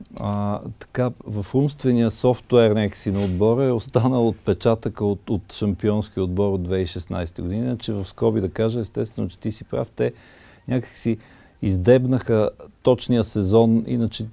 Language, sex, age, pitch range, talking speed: Bulgarian, male, 50-69, 95-115 Hz, 140 wpm